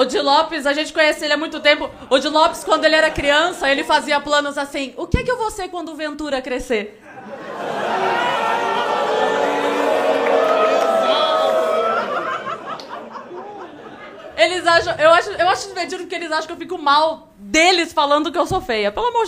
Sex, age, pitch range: female, 20-39, 270-345 Hz